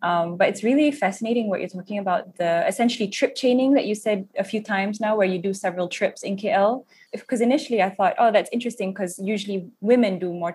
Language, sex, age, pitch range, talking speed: English, female, 10-29, 180-210 Hz, 220 wpm